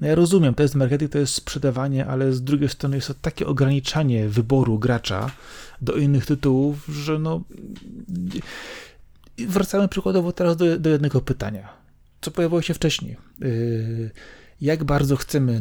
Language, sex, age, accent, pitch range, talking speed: Polish, male, 30-49, native, 125-145 Hz, 145 wpm